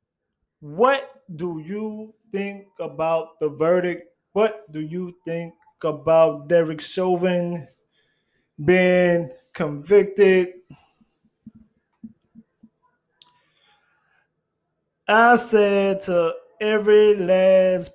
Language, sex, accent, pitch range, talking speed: English, male, American, 160-205 Hz, 70 wpm